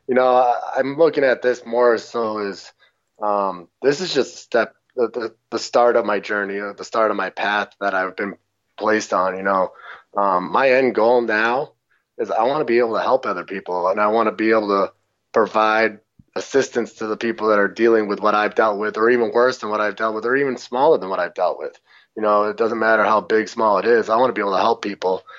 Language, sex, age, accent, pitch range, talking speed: English, male, 20-39, American, 105-120 Hz, 240 wpm